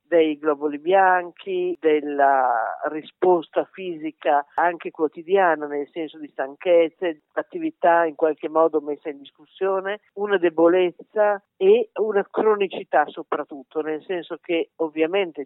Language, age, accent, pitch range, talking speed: Italian, 50-69, native, 155-200 Hz, 115 wpm